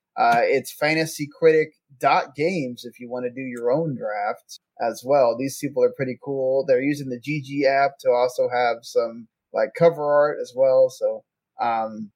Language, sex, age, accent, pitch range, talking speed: English, male, 20-39, American, 130-165 Hz, 170 wpm